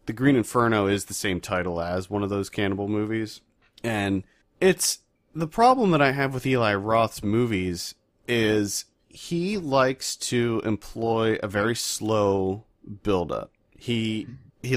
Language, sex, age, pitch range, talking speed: English, male, 30-49, 100-120 Hz, 145 wpm